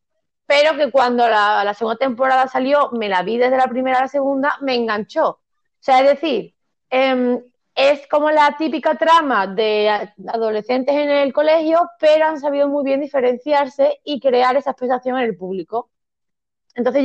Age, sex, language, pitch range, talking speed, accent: 20-39, female, Spanish, 235-285 Hz, 170 wpm, Spanish